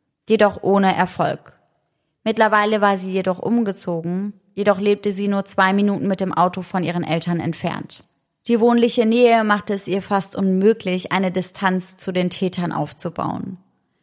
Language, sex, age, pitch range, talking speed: German, female, 20-39, 180-210 Hz, 150 wpm